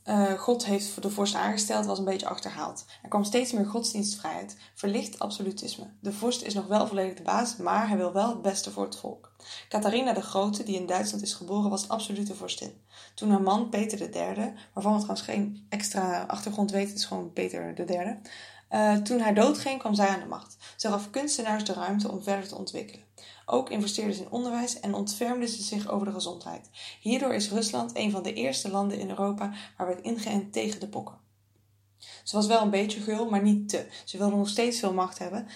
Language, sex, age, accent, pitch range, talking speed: English, female, 10-29, Dutch, 190-220 Hz, 215 wpm